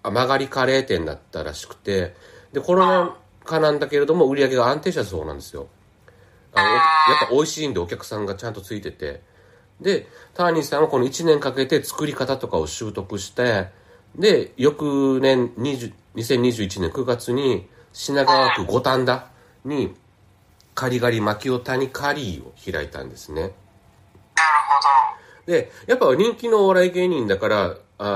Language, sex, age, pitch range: Japanese, male, 40-59, 95-150 Hz